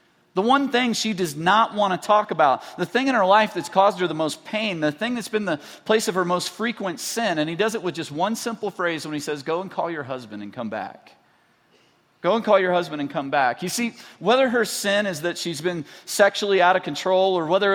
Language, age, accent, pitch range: English, 40-59, American, 150-205 Hz